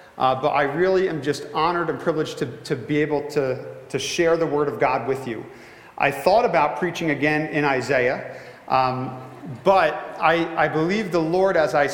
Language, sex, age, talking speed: English, male, 40-59, 190 wpm